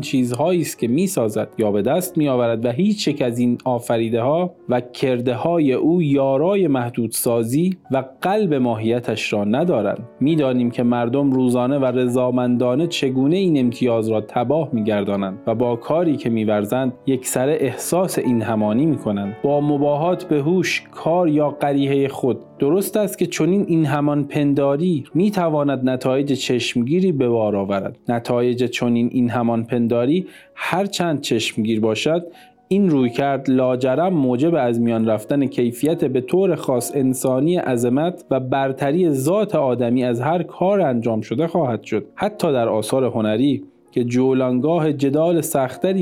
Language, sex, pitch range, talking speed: Persian, male, 120-160 Hz, 140 wpm